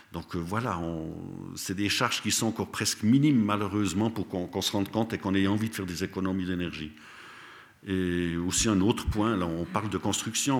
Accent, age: French, 50-69